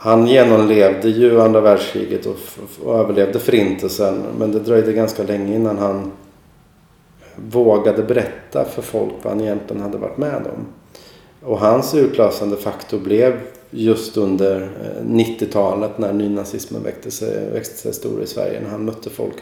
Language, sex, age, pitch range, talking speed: Swedish, male, 30-49, 100-115 Hz, 140 wpm